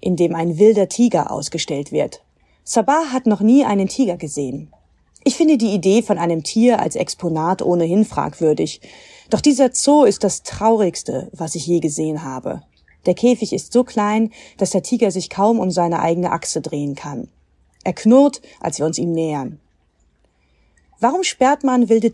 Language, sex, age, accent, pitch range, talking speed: German, female, 30-49, German, 145-210 Hz, 170 wpm